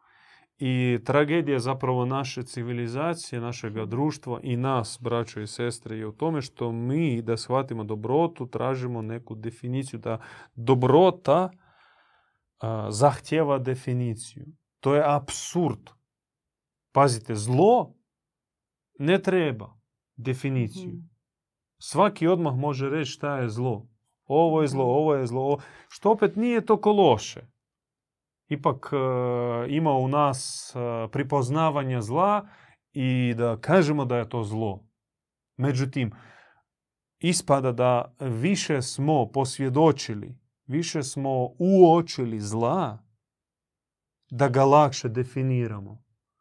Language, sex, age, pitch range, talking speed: Croatian, male, 30-49, 120-150 Hz, 105 wpm